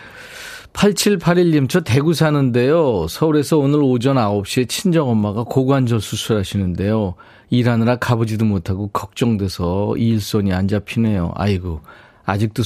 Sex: male